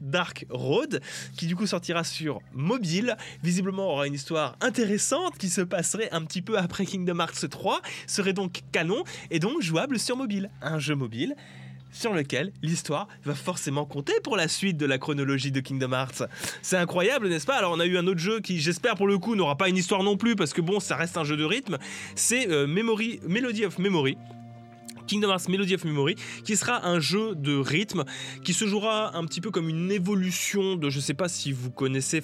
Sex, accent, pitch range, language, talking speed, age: male, French, 140-190 Hz, French, 210 wpm, 20-39